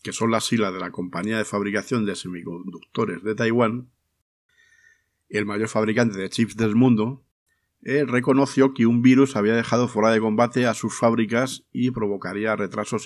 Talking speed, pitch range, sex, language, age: 165 wpm, 105-130 Hz, male, Spanish, 50-69